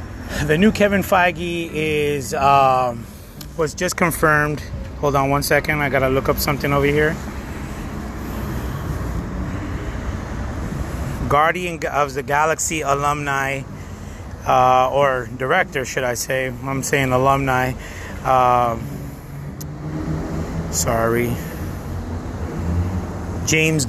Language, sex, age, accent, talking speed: English, male, 30-49, American, 95 wpm